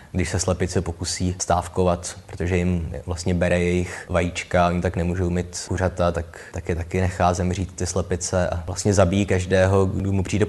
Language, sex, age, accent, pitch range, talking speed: Czech, male, 20-39, native, 90-110 Hz, 175 wpm